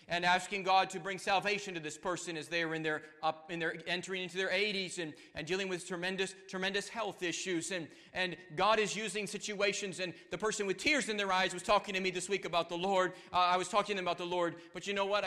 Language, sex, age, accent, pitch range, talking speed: English, male, 40-59, American, 145-185 Hz, 240 wpm